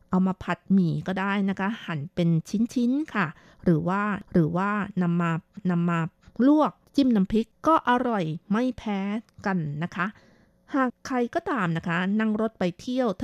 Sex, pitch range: female, 175-230 Hz